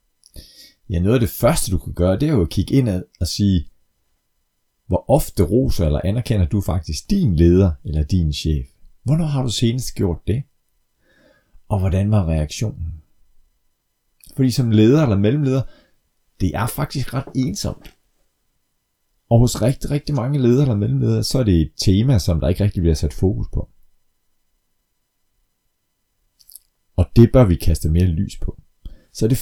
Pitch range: 80-120 Hz